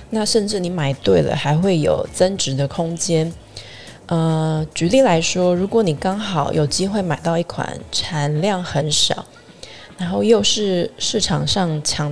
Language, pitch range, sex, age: Chinese, 145-180 Hz, female, 20-39